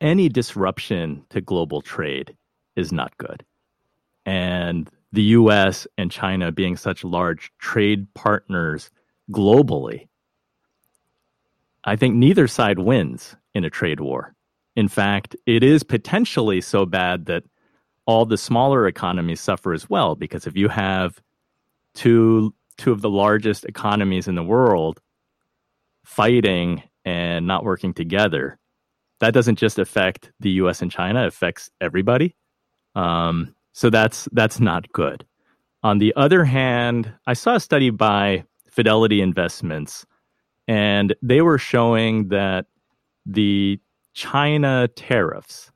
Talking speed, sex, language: 130 wpm, male, English